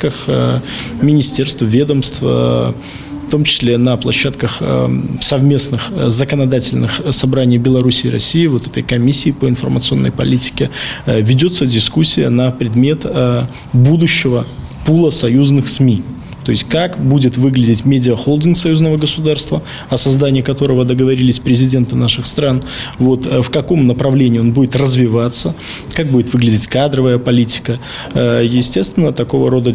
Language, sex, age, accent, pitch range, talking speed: Russian, male, 20-39, native, 120-145 Hz, 115 wpm